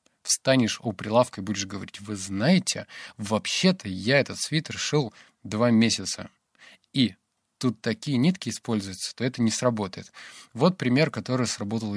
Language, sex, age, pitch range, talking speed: Russian, male, 20-39, 105-130 Hz, 140 wpm